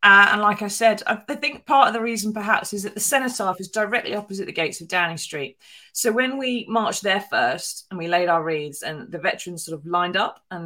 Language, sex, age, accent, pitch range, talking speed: English, female, 20-39, British, 155-200 Hz, 250 wpm